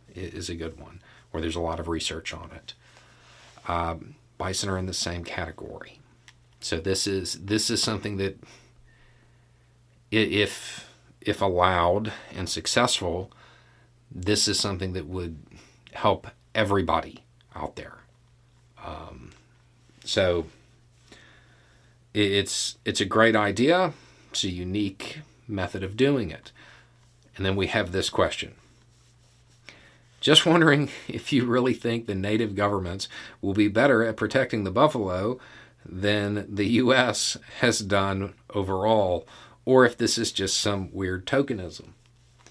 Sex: male